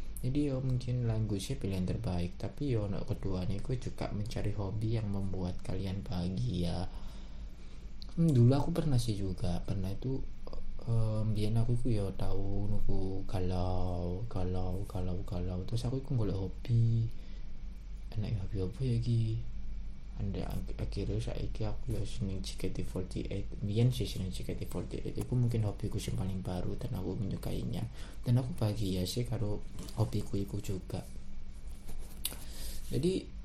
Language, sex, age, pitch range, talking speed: Indonesian, male, 20-39, 90-115 Hz, 145 wpm